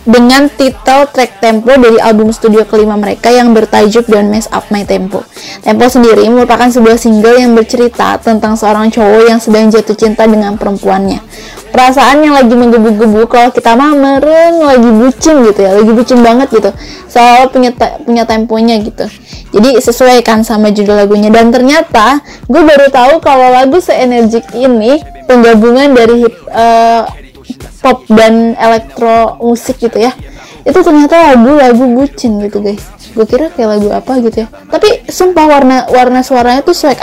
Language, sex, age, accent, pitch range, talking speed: Indonesian, female, 10-29, native, 220-255 Hz, 155 wpm